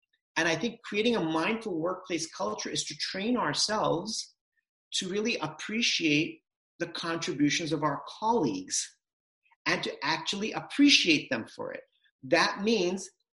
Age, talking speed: 40-59, 130 wpm